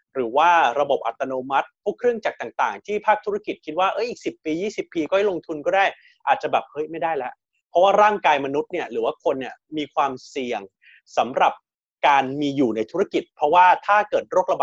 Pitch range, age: 145-210 Hz, 30-49